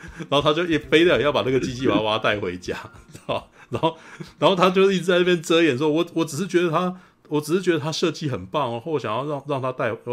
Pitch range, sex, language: 105-165 Hz, male, Chinese